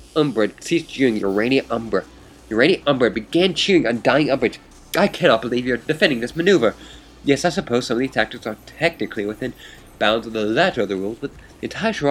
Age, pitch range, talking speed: 30-49, 105-135 Hz, 195 wpm